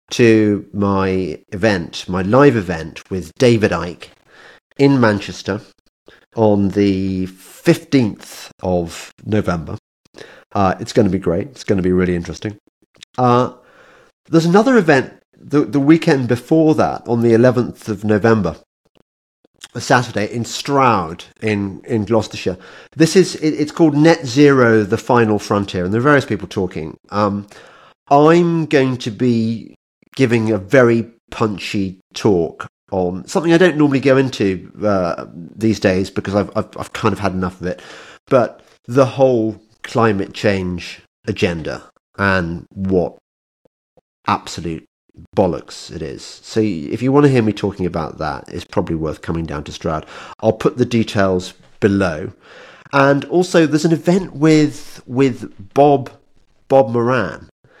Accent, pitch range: British, 95-135 Hz